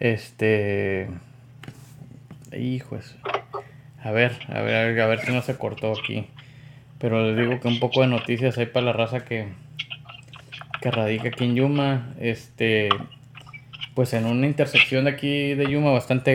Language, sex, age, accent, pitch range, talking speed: Spanish, male, 20-39, Mexican, 115-135 Hz, 150 wpm